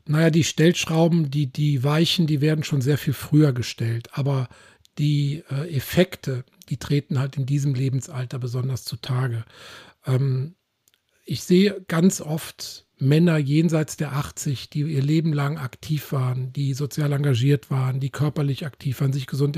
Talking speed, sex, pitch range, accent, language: 155 wpm, male, 135-155 Hz, German, German